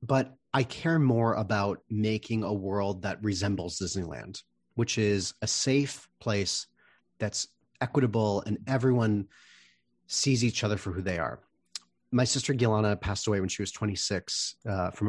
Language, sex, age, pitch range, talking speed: English, male, 30-49, 95-125 Hz, 150 wpm